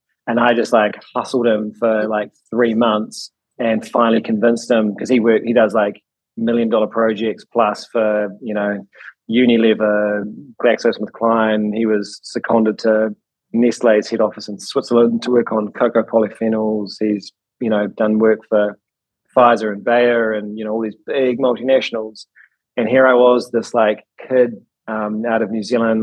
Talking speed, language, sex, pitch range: 160 wpm, English, male, 110-120 Hz